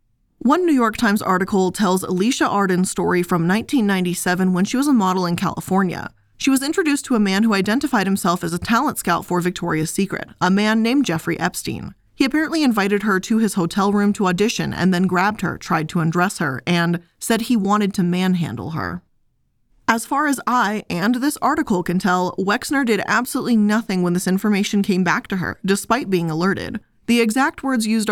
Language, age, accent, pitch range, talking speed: English, 20-39, American, 180-230 Hz, 195 wpm